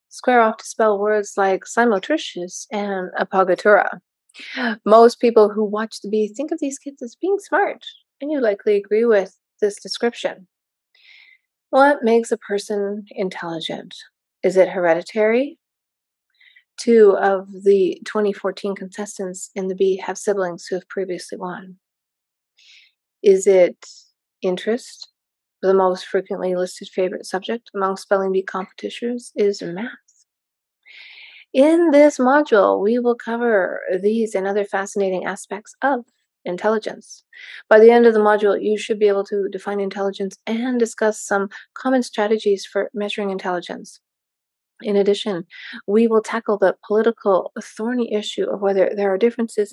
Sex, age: female, 30-49